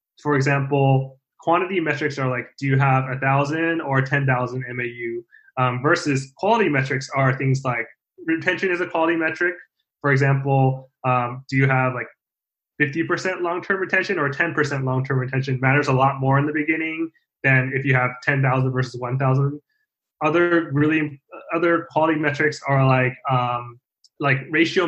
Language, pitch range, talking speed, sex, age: English, 130-160 Hz, 150 wpm, male, 20-39